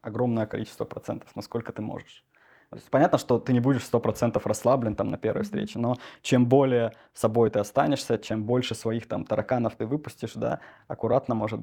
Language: Russian